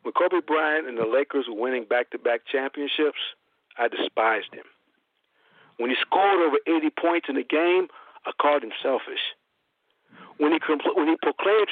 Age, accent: 50-69, American